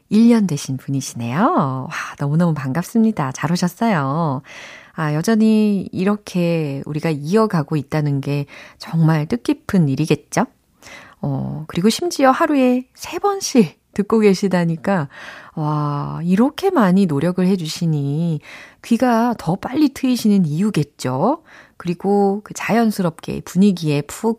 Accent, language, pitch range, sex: native, Korean, 155-245 Hz, female